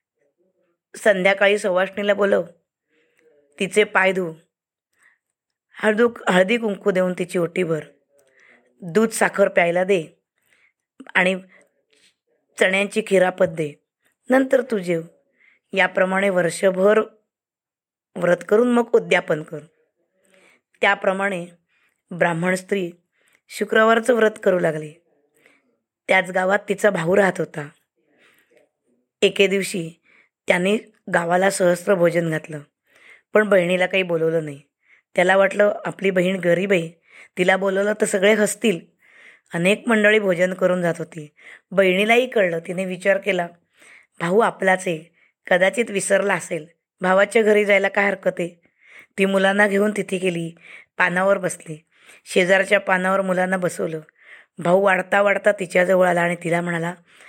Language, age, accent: Marathi, 20-39, native